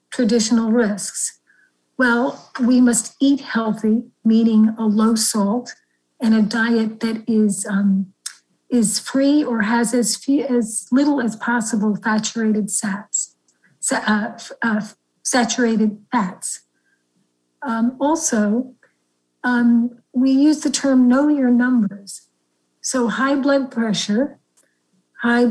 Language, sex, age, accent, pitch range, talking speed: English, female, 50-69, American, 215-260 Hz, 110 wpm